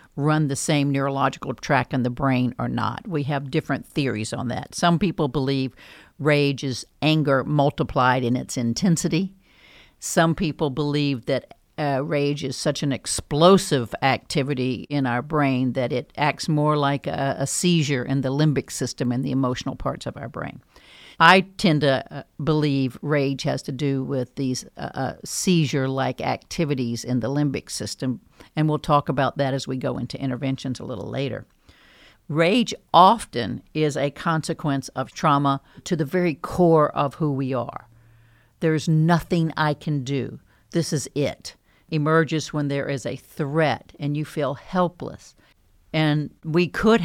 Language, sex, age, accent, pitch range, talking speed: English, female, 60-79, American, 135-155 Hz, 160 wpm